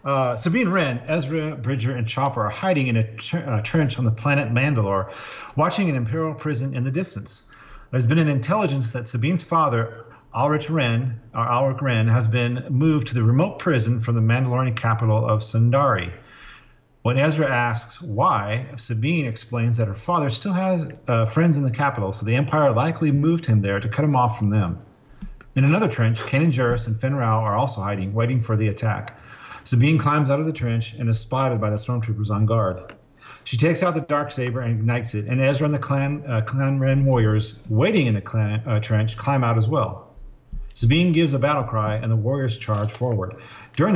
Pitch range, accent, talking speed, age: 110-140 Hz, American, 195 wpm, 40-59